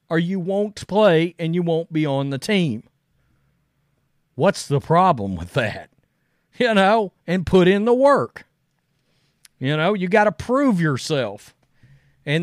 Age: 40-59